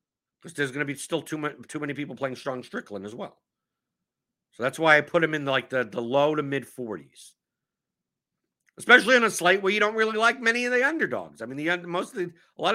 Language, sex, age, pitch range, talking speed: English, male, 50-69, 140-175 Hz, 240 wpm